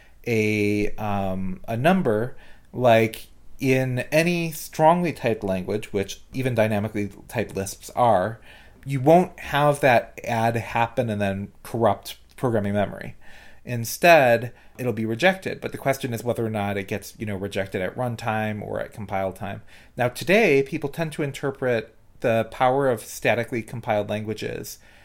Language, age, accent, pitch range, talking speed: English, 30-49, American, 110-135 Hz, 145 wpm